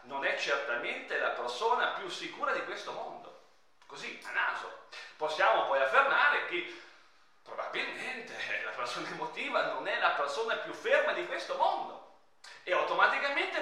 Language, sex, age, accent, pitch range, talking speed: Italian, male, 40-59, native, 255-365 Hz, 140 wpm